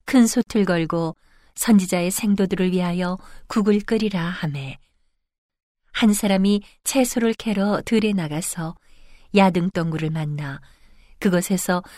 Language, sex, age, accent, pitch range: Korean, female, 40-59, native, 155-205 Hz